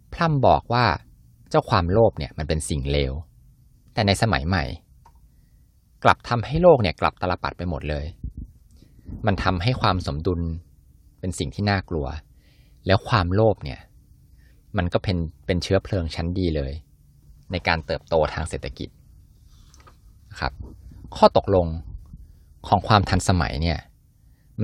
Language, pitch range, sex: Thai, 75-100 Hz, male